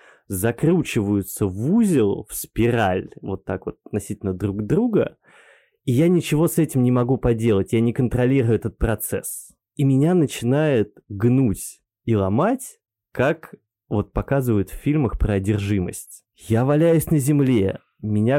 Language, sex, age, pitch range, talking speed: Russian, male, 20-39, 105-135 Hz, 135 wpm